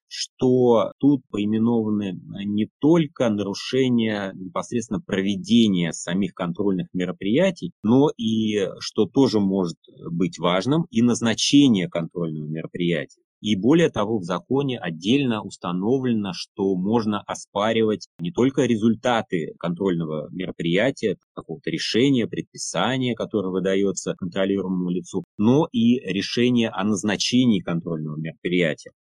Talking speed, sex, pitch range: 105 wpm, male, 90-115 Hz